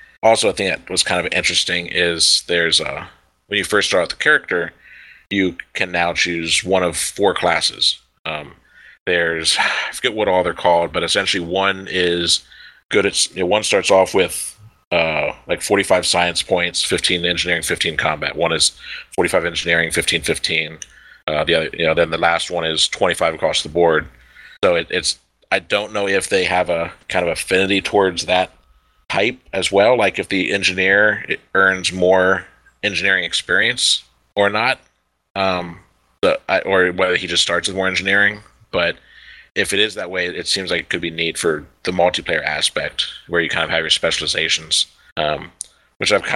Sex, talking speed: male, 180 wpm